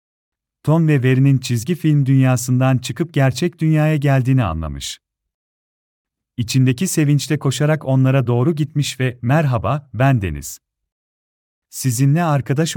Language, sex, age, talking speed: Turkish, male, 40-59, 110 wpm